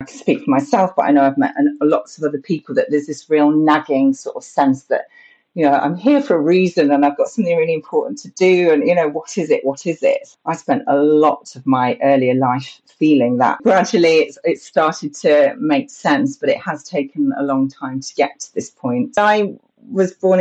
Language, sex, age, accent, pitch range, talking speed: English, female, 40-59, British, 135-180 Hz, 235 wpm